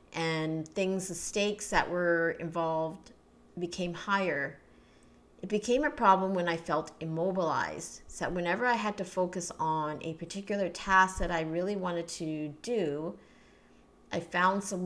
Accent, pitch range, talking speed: American, 155-195 Hz, 150 wpm